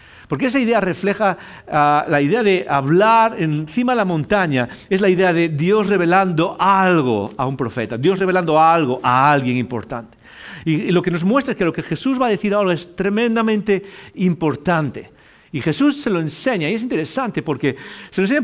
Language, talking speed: English, 190 wpm